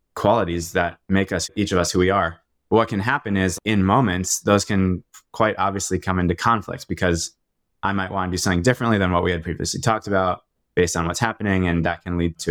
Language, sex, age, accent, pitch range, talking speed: English, male, 20-39, American, 90-105 Hz, 225 wpm